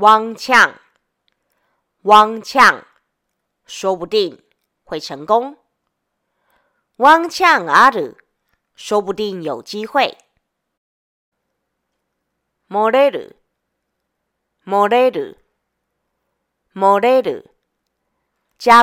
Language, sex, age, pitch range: Japanese, female, 40-59, 170-245 Hz